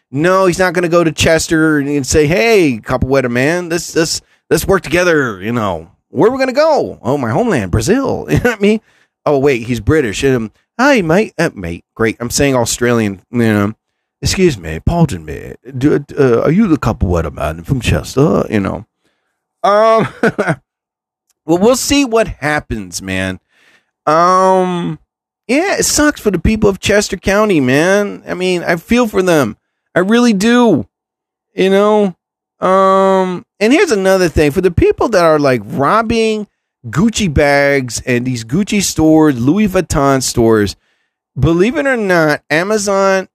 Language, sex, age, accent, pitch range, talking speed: English, male, 30-49, American, 125-195 Hz, 165 wpm